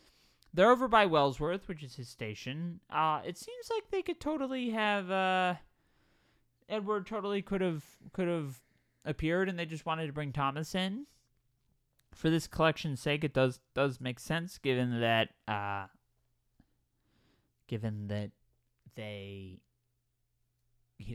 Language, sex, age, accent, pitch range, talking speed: English, male, 20-39, American, 110-155 Hz, 135 wpm